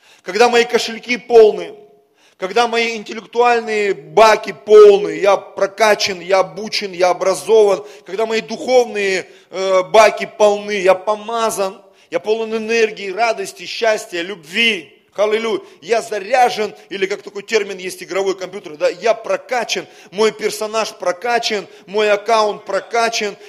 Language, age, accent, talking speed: Russian, 30-49, native, 120 wpm